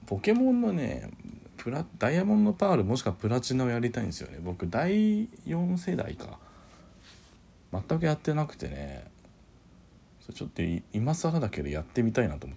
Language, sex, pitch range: Japanese, male, 85-125 Hz